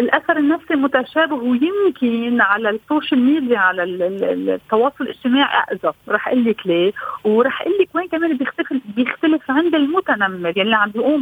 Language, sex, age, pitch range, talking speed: Arabic, female, 40-59, 215-280 Hz, 150 wpm